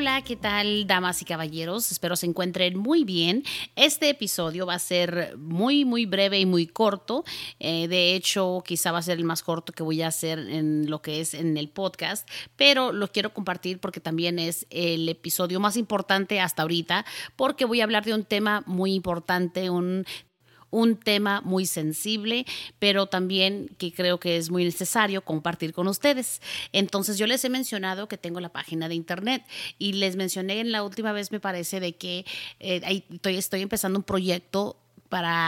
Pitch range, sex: 175-215 Hz, female